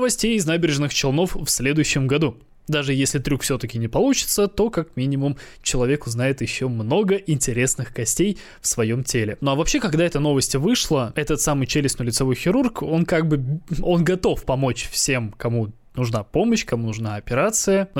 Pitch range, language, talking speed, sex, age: 120-160 Hz, Russian, 170 wpm, male, 20-39